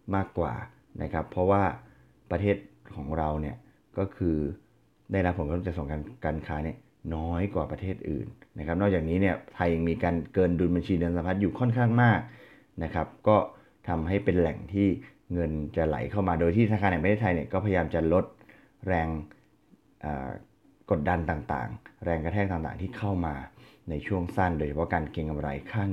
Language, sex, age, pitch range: Thai, male, 20-39, 80-100 Hz